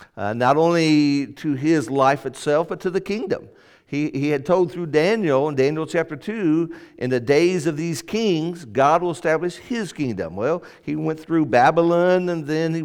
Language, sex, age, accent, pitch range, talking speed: English, male, 50-69, American, 150-195 Hz, 185 wpm